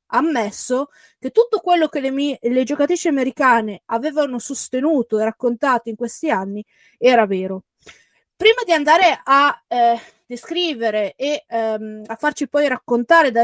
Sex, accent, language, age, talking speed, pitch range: female, native, Italian, 20-39, 145 wpm, 225-300 Hz